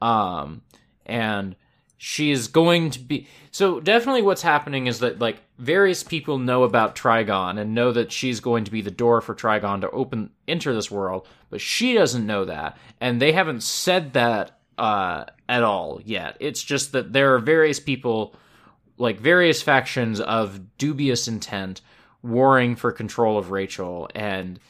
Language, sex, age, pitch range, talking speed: English, male, 20-39, 115-160 Hz, 165 wpm